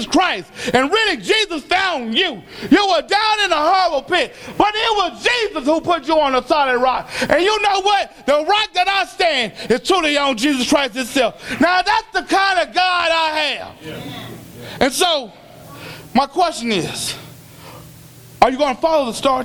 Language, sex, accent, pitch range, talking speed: English, male, American, 240-330 Hz, 180 wpm